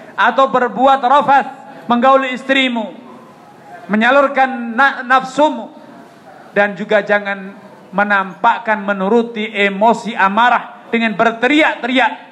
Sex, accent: male, native